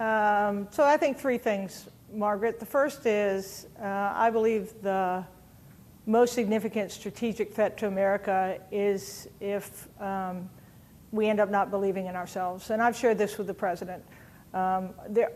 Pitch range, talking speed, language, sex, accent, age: 190-210 Hz, 150 wpm, English, female, American, 50-69